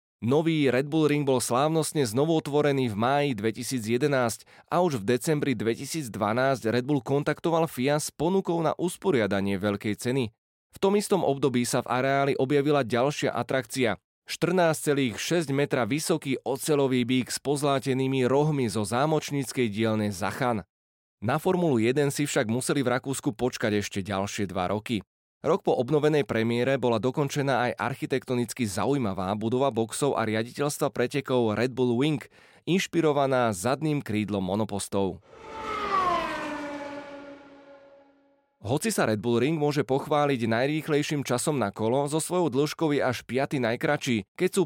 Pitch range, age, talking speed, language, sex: 120-150 Hz, 20-39, 135 wpm, Slovak, male